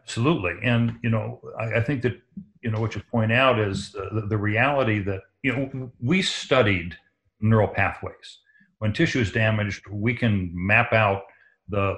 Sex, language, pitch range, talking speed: male, English, 105-125 Hz, 170 wpm